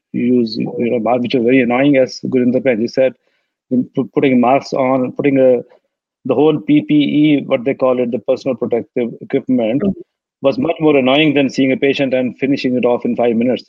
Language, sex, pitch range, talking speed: Punjabi, male, 125-150 Hz, 180 wpm